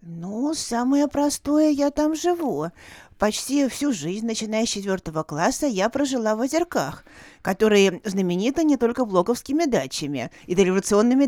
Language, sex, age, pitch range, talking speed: Russian, female, 40-59, 170-270 Hz, 135 wpm